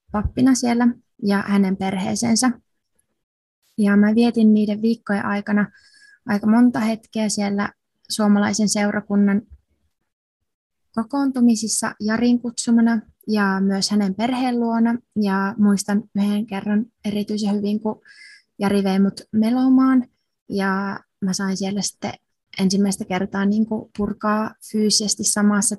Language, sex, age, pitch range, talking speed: Finnish, female, 20-39, 200-225 Hz, 105 wpm